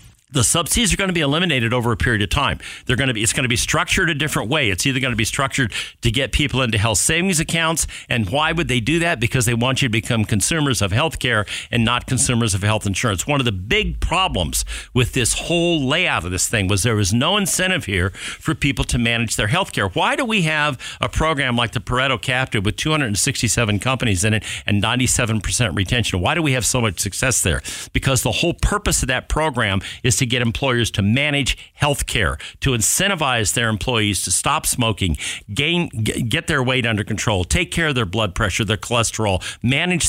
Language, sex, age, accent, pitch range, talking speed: English, male, 50-69, American, 110-150 Hz, 220 wpm